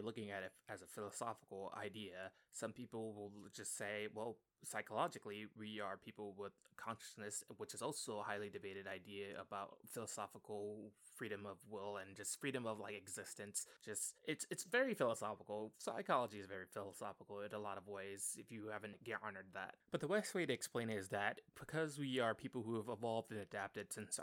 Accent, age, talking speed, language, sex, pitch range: American, 20-39, 185 wpm, English, male, 100-115 Hz